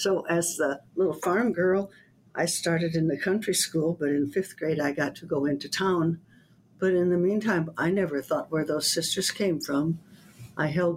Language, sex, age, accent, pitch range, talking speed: English, female, 60-79, American, 145-180 Hz, 195 wpm